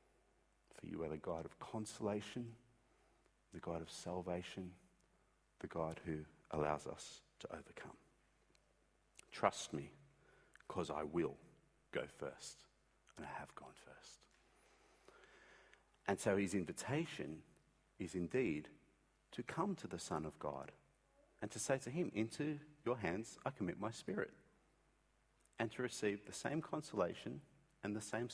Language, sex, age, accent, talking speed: English, male, 50-69, Australian, 135 wpm